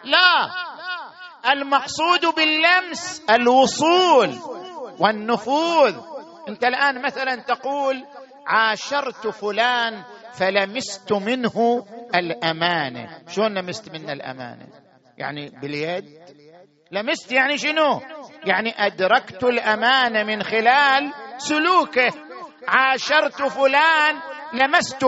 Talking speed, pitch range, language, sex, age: 75 wpm, 200-285 Hz, Arabic, male, 50-69